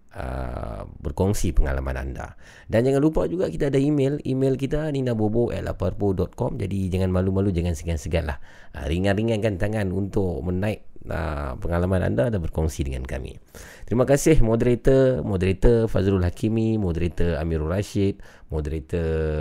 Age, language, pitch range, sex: 30-49, Malay, 85-115 Hz, male